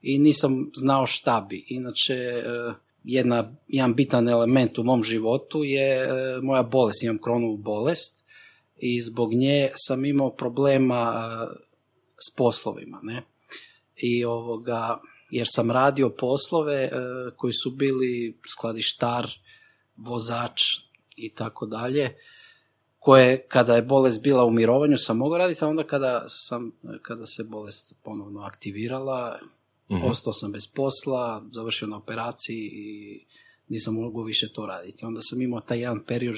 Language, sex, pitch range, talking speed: Croatian, male, 110-130 Hz, 130 wpm